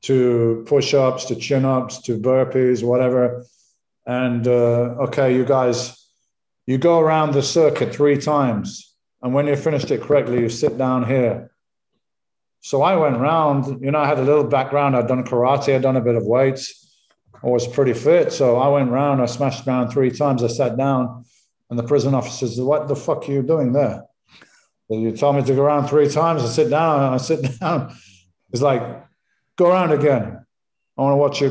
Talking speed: 200 wpm